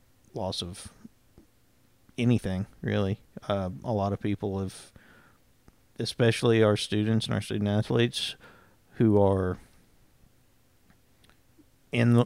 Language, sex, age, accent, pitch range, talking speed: English, male, 50-69, American, 100-115 Hz, 100 wpm